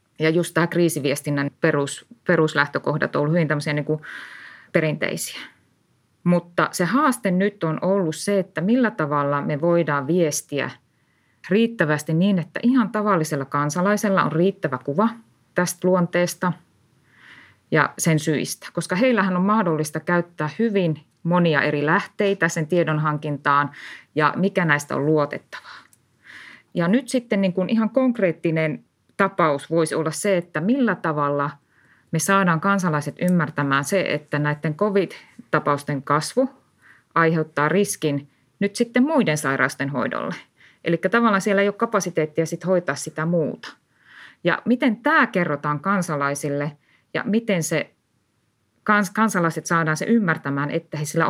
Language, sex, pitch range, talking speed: Finnish, female, 150-195 Hz, 125 wpm